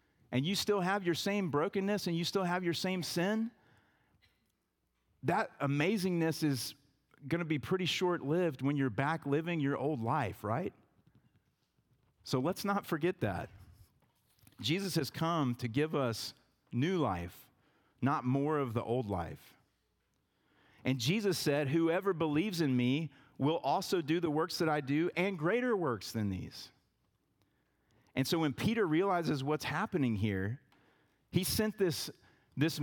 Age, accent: 40-59, American